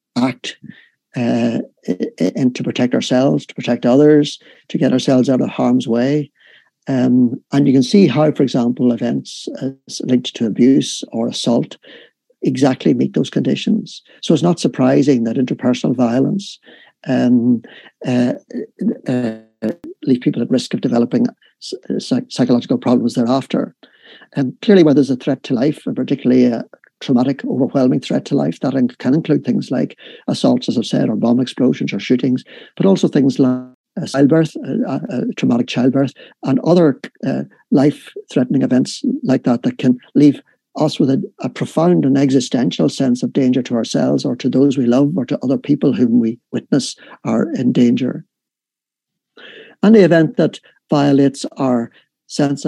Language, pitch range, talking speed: English, 125-145 Hz, 155 wpm